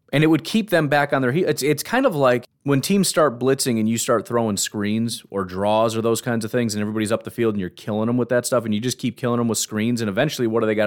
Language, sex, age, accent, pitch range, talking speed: English, male, 30-49, American, 110-140 Hz, 310 wpm